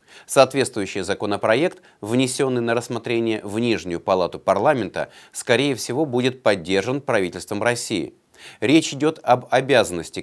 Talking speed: 110 wpm